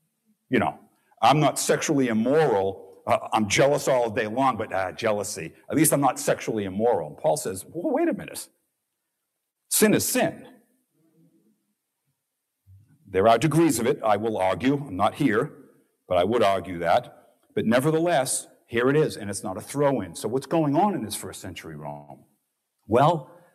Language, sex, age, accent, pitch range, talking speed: English, male, 50-69, American, 95-140 Hz, 170 wpm